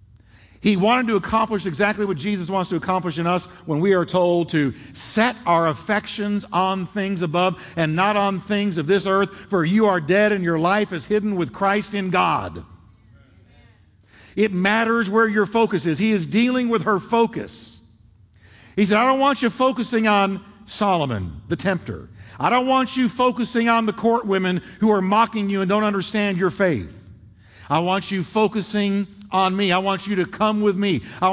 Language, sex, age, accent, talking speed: English, male, 50-69, American, 185 wpm